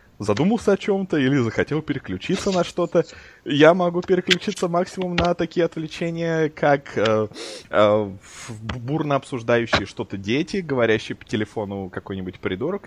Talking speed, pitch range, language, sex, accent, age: 125 wpm, 100-150 Hz, Russian, male, native, 20-39